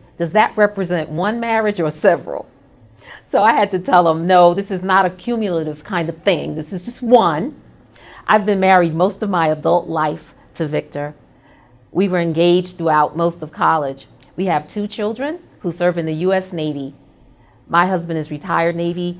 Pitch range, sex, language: 155-205 Hz, female, English